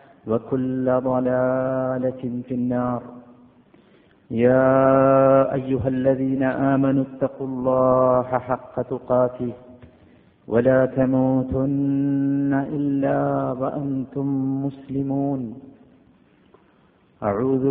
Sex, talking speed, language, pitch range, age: male, 60 wpm, Malayalam, 125-140 Hz, 50-69